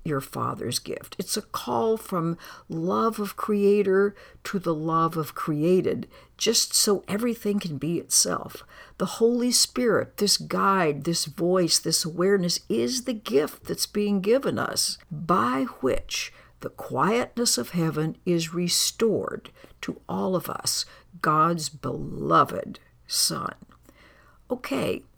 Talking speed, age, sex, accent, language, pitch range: 125 wpm, 60-79, female, American, English, 160-215 Hz